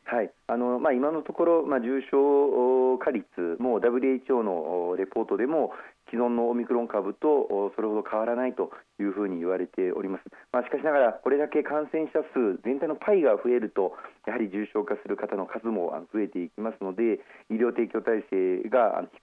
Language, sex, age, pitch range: Japanese, male, 40-59, 100-130 Hz